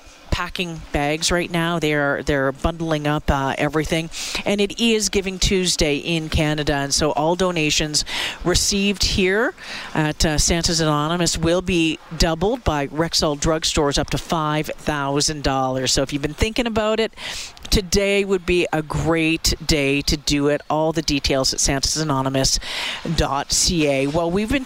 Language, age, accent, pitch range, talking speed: English, 40-59, American, 150-175 Hz, 155 wpm